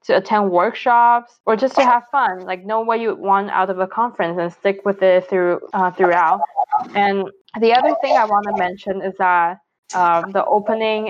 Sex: female